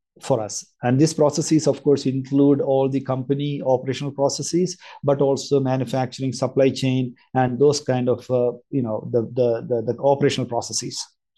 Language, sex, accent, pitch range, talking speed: English, male, Indian, 125-145 Hz, 165 wpm